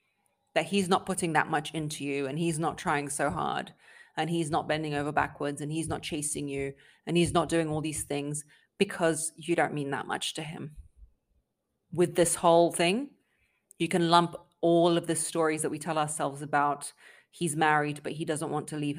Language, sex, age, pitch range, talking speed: English, female, 20-39, 150-180 Hz, 200 wpm